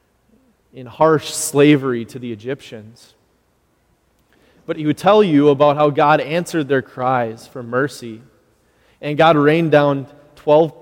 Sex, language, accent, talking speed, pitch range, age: male, English, American, 135 wpm, 120-150 Hz, 20-39